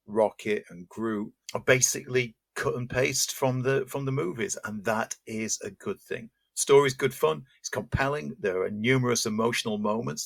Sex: male